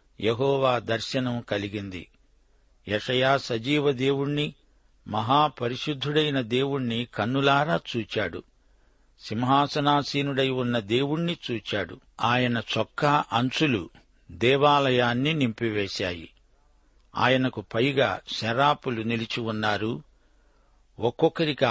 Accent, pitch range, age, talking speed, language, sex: native, 115-145 Hz, 60-79, 65 wpm, Telugu, male